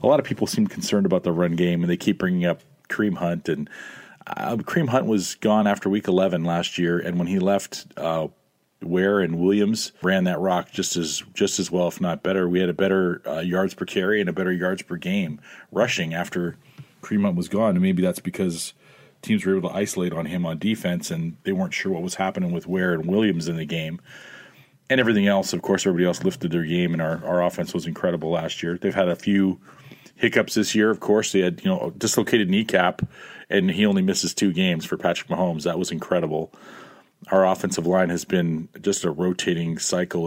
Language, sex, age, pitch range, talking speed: English, male, 40-59, 85-125 Hz, 220 wpm